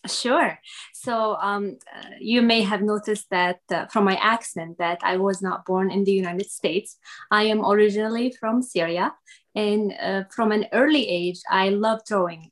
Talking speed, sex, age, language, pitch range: 170 wpm, female, 20-39, English, 190-220 Hz